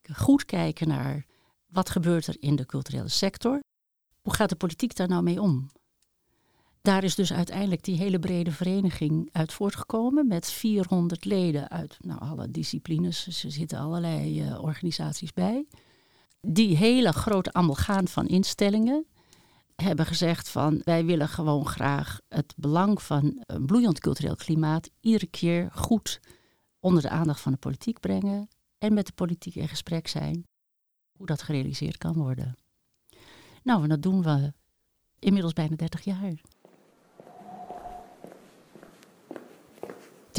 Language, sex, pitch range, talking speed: Dutch, female, 160-200 Hz, 135 wpm